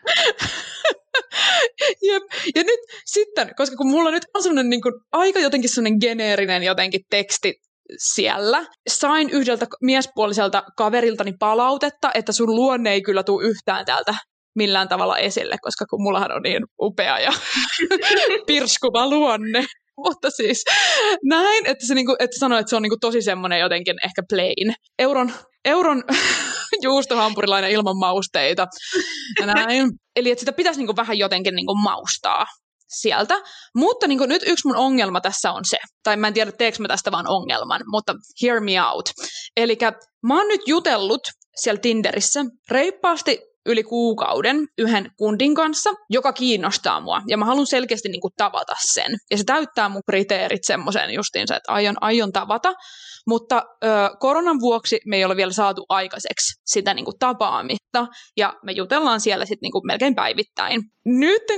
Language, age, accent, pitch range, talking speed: Finnish, 20-39, native, 215-290 Hz, 145 wpm